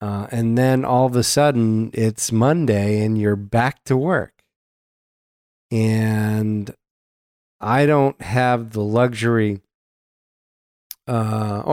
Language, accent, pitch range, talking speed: English, American, 105-120 Hz, 105 wpm